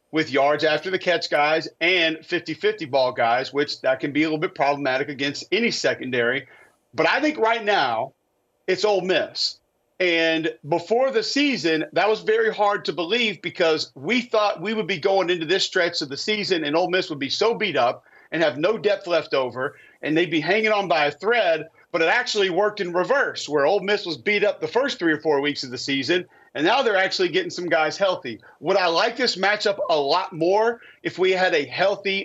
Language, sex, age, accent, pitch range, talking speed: English, male, 40-59, American, 160-215 Hz, 215 wpm